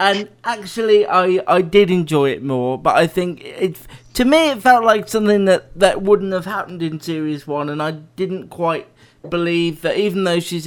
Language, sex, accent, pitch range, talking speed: English, male, British, 140-175 Hz, 195 wpm